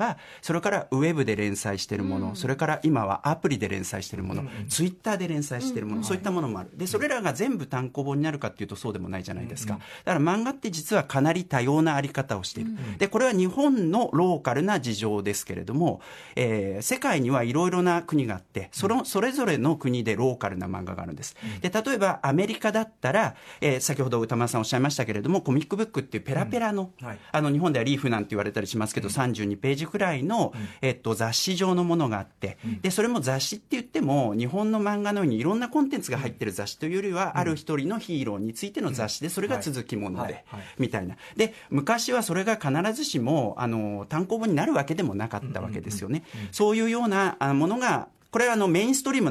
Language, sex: Japanese, male